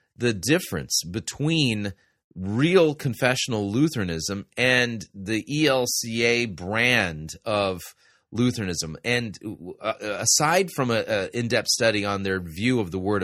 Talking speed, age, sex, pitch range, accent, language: 115 wpm, 30-49, male, 100-125 Hz, American, English